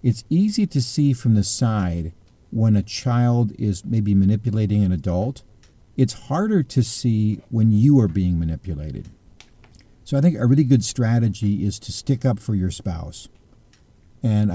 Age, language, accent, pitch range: 50-69, English, American, 100-125 Hz